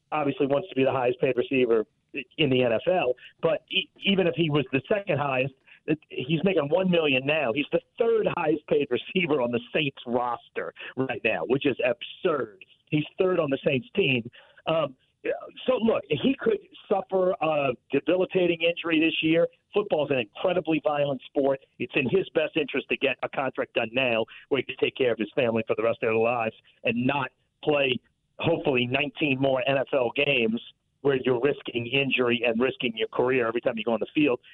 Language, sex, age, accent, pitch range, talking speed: English, male, 50-69, American, 140-210 Hz, 180 wpm